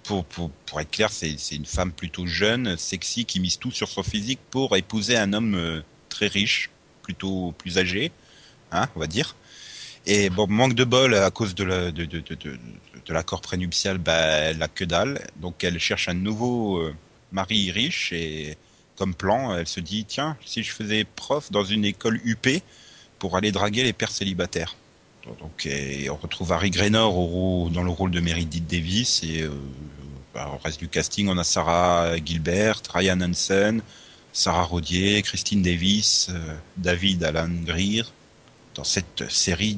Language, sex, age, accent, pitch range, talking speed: French, male, 30-49, French, 85-105 Hz, 180 wpm